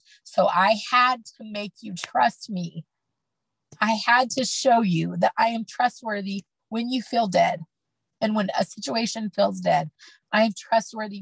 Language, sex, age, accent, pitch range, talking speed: English, female, 30-49, American, 180-225 Hz, 160 wpm